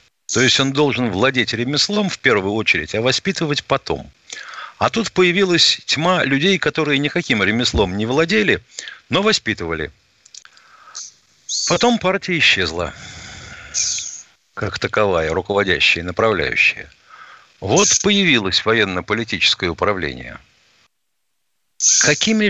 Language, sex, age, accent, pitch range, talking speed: Russian, male, 60-79, native, 100-160 Hz, 100 wpm